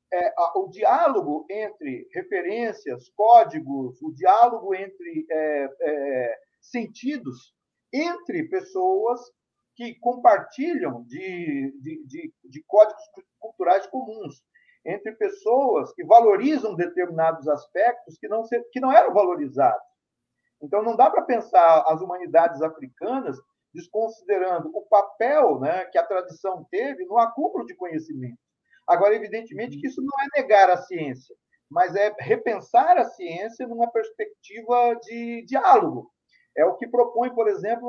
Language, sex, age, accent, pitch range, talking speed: Portuguese, male, 50-69, Brazilian, 175-280 Hz, 115 wpm